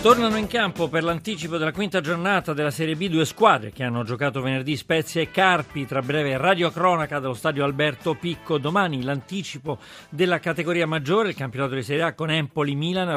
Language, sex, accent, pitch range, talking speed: Italian, male, native, 145-180 Hz, 185 wpm